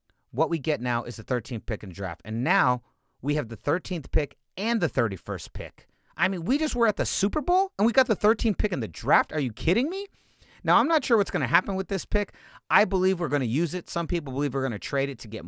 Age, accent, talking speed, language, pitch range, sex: 30-49, American, 280 wpm, English, 115-160 Hz, male